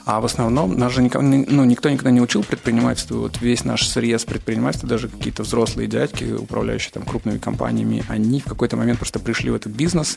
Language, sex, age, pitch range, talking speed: Russian, male, 20-39, 110-125 Hz, 190 wpm